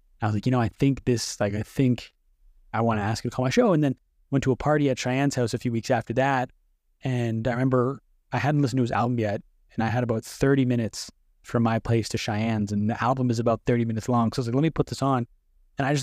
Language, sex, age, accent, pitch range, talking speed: English, male, 20-39, American, 105-135 Hz, 280 wpm